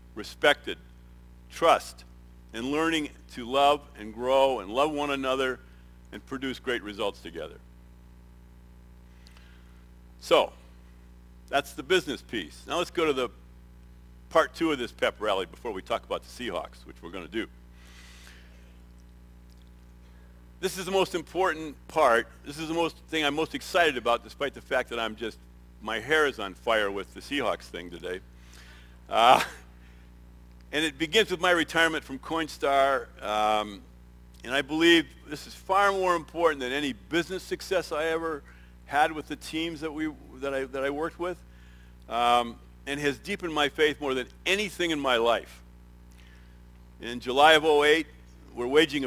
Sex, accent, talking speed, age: male, American, 155 wpm, 50-69